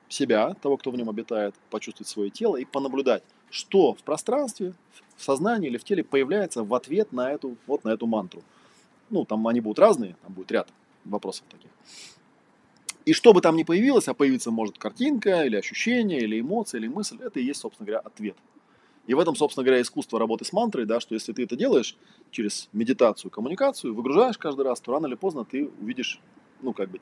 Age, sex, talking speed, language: 20-39, male, 200 wpm, Russian